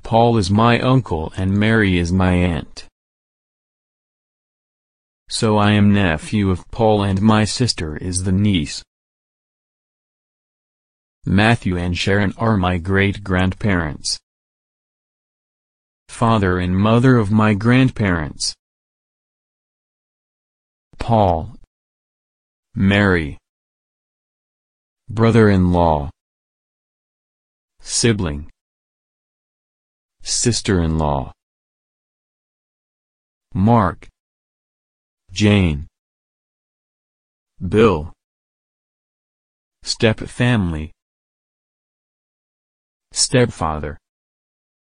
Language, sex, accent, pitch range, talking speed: English, male, American, 85-110 Hz, 60 wpm